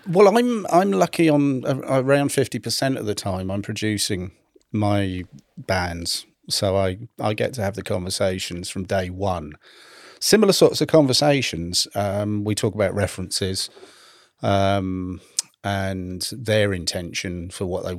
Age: 40-59